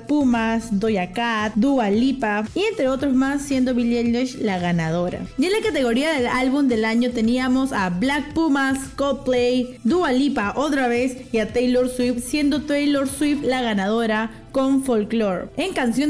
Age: 20-39